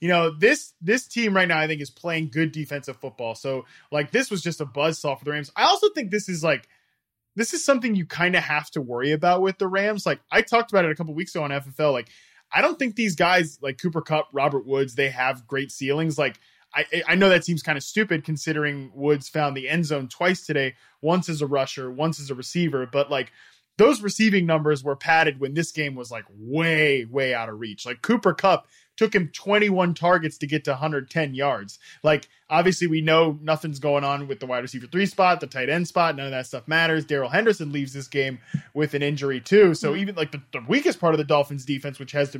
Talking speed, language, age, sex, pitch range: 240 wpm, English, 20-39, male, 140-180 Hz